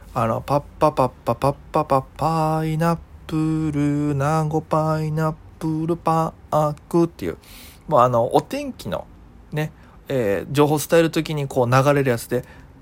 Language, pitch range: Japanese, 120-160 Hz